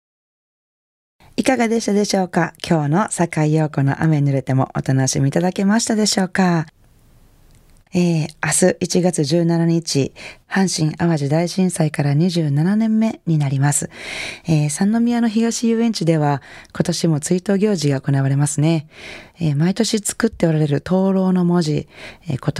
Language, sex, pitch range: Japanese, female, 145-195 Hz